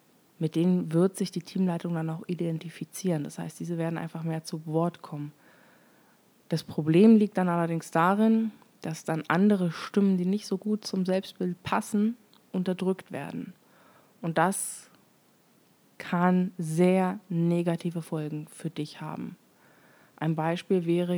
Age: 20-39